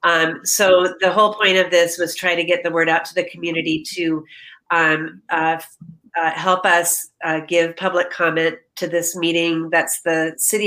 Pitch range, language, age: 170-190 Hz, English, 40-59